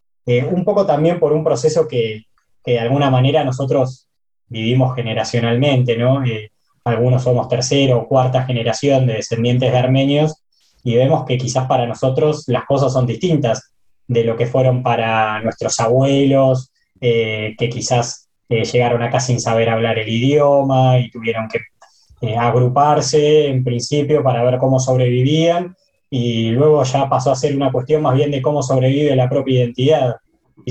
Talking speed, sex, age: 160 wpm, male, 20-39